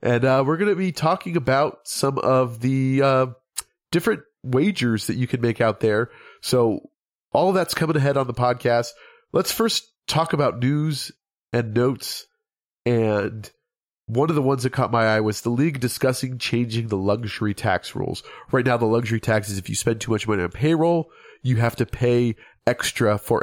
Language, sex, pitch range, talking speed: English, male, 110-135 Hz, 190 wpm